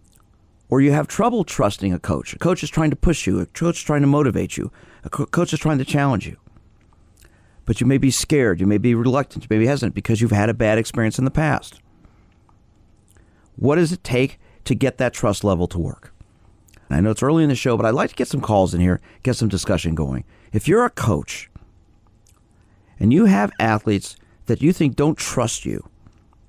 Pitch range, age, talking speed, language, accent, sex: 95-130 Hz, 50-69, 215 wpm, English, American, male